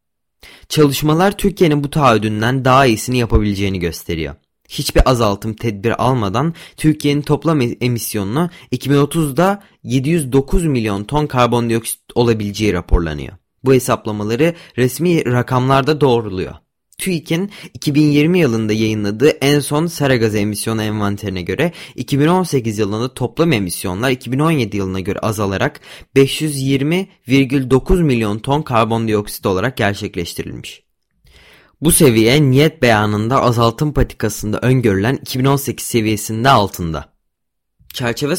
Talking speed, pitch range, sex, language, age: 95 wpm, 105-145 Hz, male, Turkish, 30-49